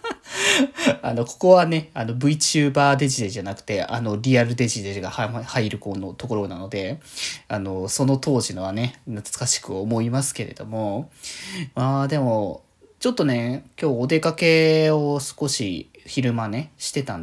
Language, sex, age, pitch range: Japanese, male, 20-39, 110-140 Hz